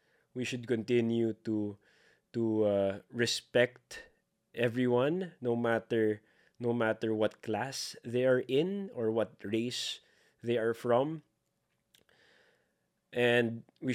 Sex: male